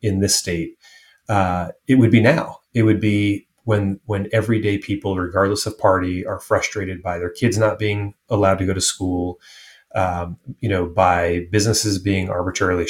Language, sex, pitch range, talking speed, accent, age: English, male, 90-105 Hz, 170 wpm, American, 30-49